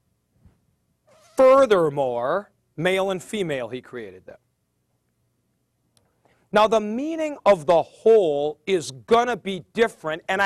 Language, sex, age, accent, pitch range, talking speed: English, male, 50-69, American, 135-210 Hz, 110 wpm